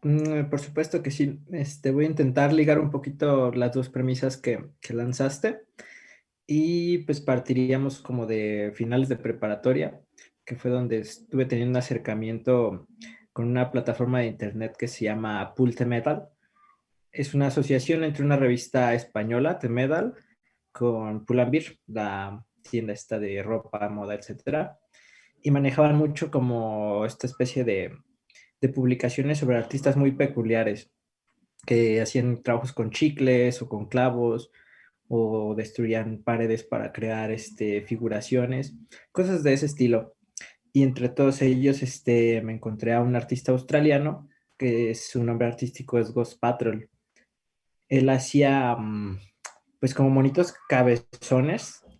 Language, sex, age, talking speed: Spanish, male, 20-39, 135 wpm